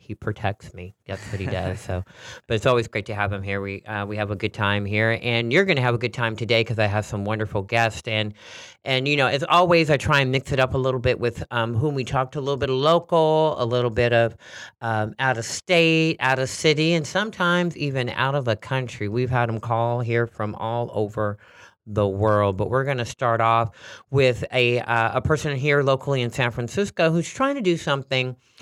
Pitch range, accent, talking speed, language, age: 110-155 Hz, American, 240 wpm, English, 40-59